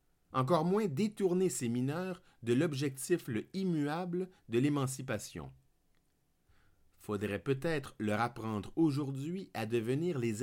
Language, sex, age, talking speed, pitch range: French, male, 50-69, 110 wpm, 115-180 Hz